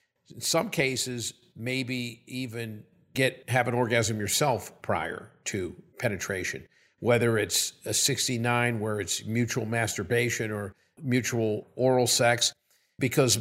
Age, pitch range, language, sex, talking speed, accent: 50-69, 115-130 Hz, English, male, 115 wpm, American